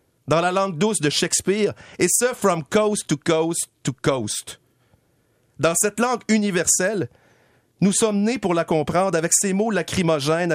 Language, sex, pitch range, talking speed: French, male, 150-215 Hz, 160 wpm